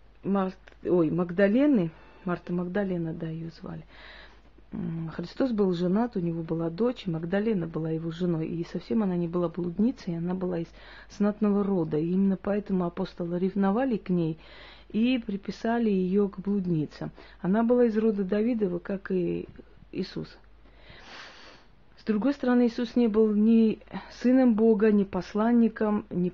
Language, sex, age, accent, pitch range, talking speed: Russian, female, 40-59, native, 170-215 Hz, 135 wpm